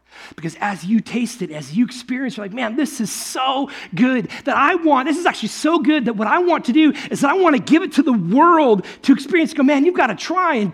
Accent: American